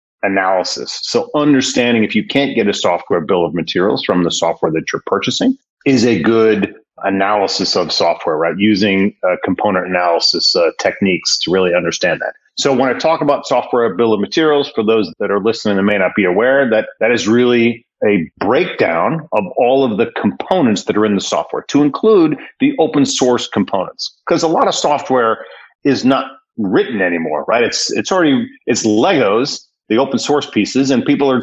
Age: 40-59